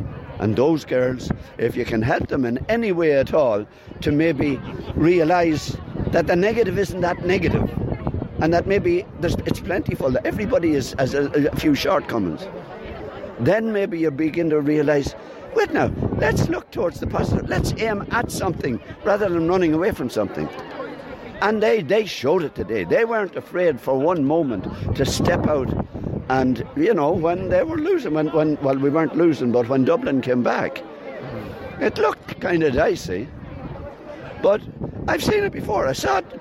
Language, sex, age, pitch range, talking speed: English, male, 60-79, 135-175 Hz, 175 wpm